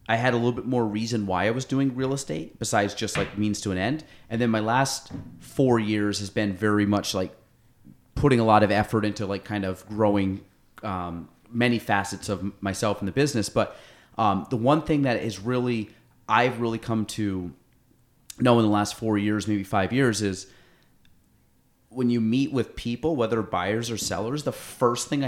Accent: American